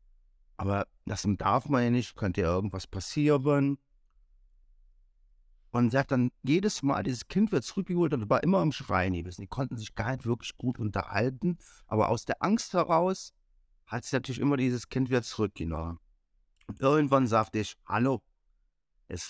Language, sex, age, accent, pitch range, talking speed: German, male, 50-69, German, 90-130 Hz, 160 wpm